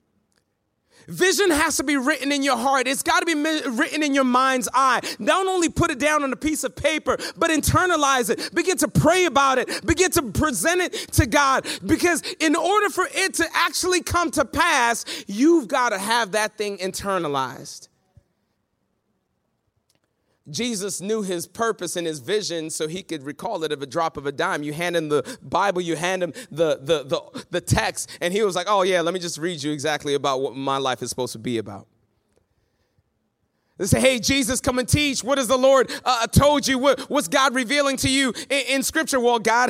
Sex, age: male, 30-49